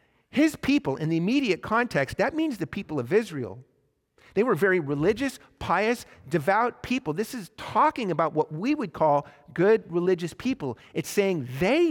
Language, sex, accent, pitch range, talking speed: English, male, American, 145-195 Hz, 165 wpm